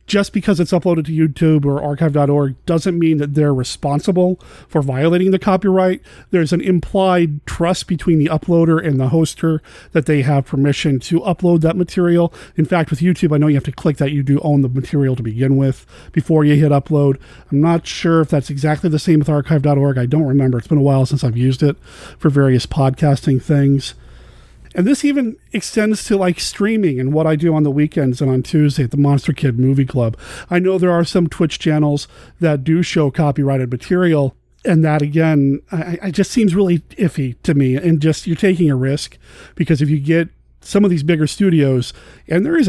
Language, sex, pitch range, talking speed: English, male, 140-175 Hz, 205 wpm